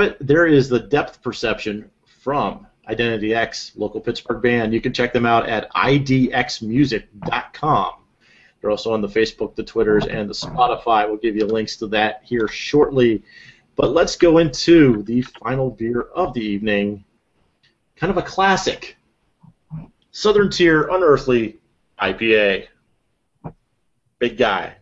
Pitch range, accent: 115-165 Hz, American